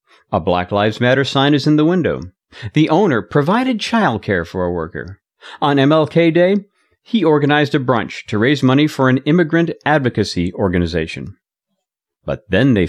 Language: English